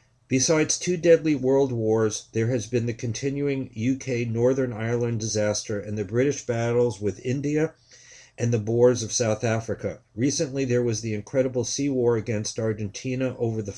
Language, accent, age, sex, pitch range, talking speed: English, American, 50-69, male, 110-130 Hz, 155 wpm